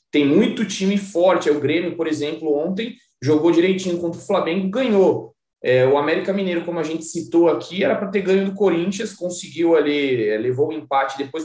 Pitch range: 145-195 Hz